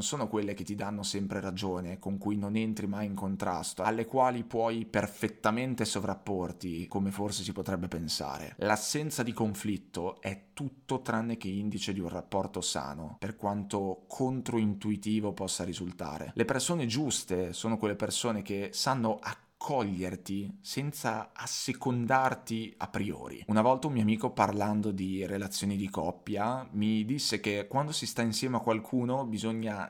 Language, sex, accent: Italian, male, native